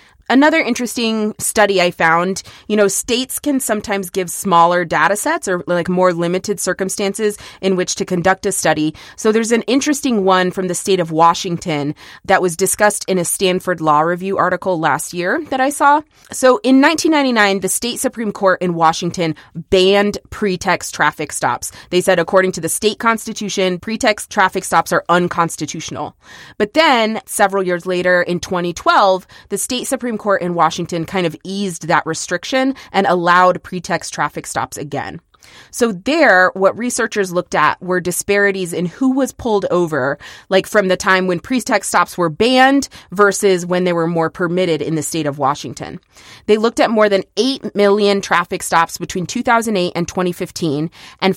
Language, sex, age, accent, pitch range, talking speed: English, female, 20-39, American, 175-210 Hz, 170 wpm